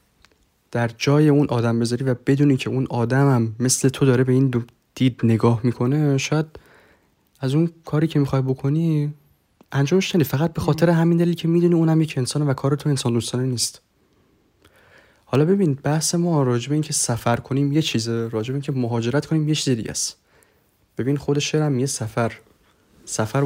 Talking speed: 170 wpm